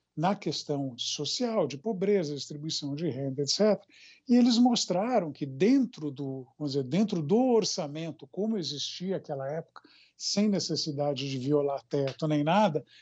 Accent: Brazilian